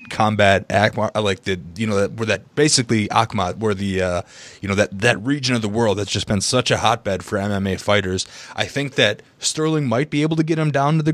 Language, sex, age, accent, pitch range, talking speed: English, male, 20-39, American, 105-130 Hz, 235 wpm